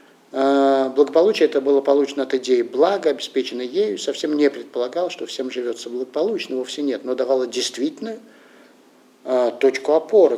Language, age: English, 50-69